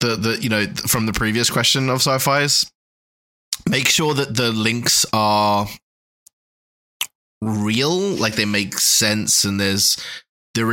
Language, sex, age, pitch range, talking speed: English, male, 20-39, 100-115 Hz, 140 wpm